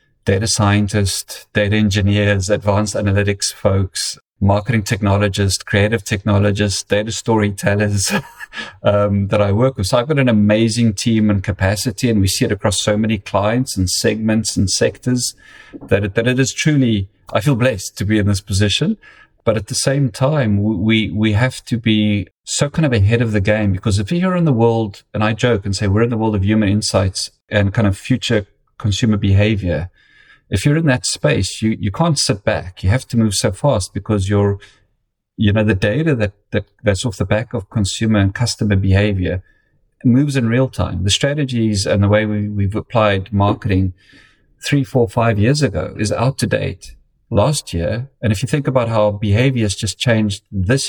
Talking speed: 190 wpm